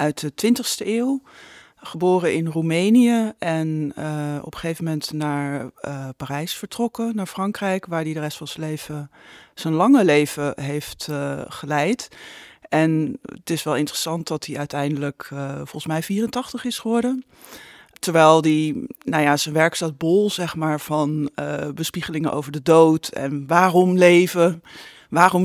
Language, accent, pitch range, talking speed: Dutch, Dutch, 150-180 Hz, 155 wpm